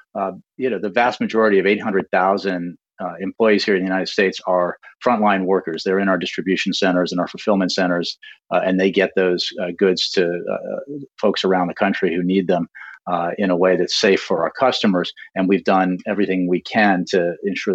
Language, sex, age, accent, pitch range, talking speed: English, male, 40-59, American, 90-105 Hz, 210 wpm